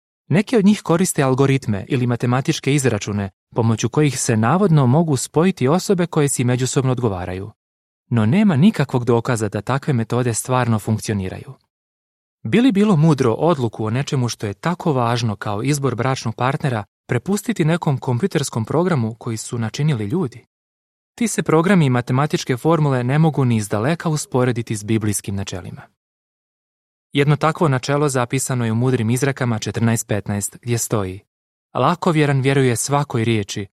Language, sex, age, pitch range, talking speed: Croatian, male, 30-49, 110-150 Hz, 140 wpm